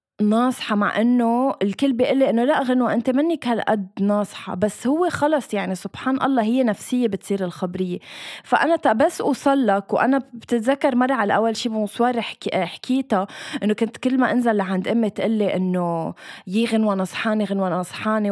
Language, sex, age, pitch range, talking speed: Arabic, female, 20-39, 205-265 Hz, 155 wpm